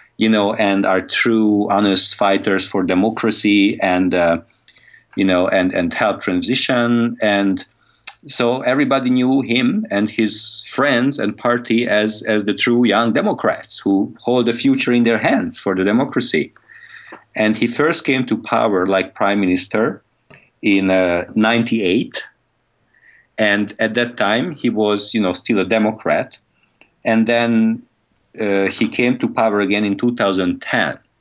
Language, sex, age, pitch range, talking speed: English, male, 50-69, 100-120 Hz, 145 wpm